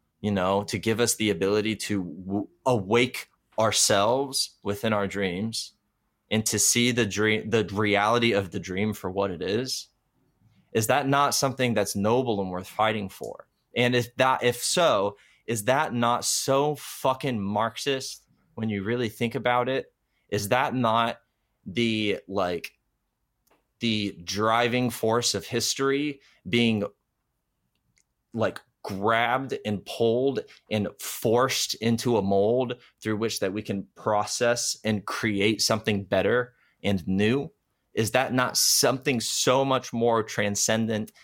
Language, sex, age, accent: English, male, 20-39, American